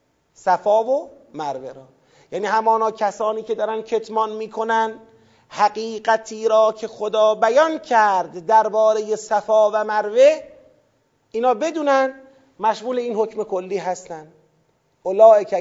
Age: 30-49